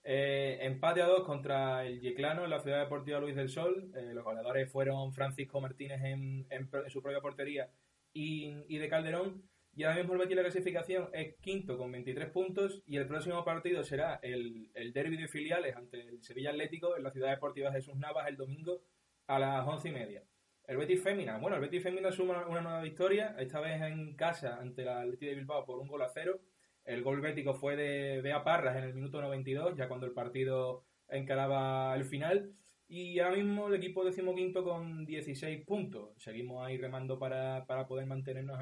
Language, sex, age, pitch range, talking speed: Spanish, male, 20-39, 130-170 Hz, 195 wpm